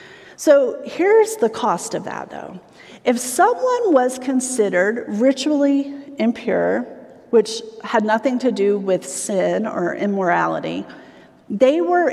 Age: 40-59